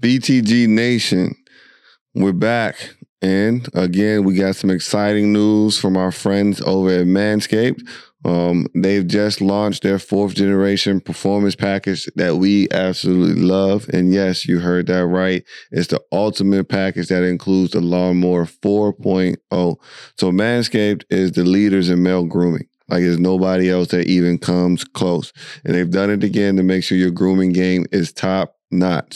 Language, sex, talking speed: English, male, 155 wpm